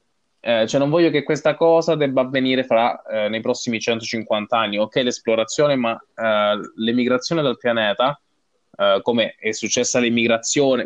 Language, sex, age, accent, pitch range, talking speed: Italian, male, 20-39, native, 110-140 Hz, 150 wpm